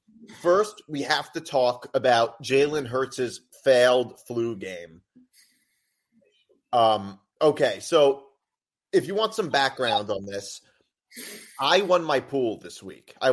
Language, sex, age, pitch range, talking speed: English, male, 30-49, 125-190 Hz, 125 wpm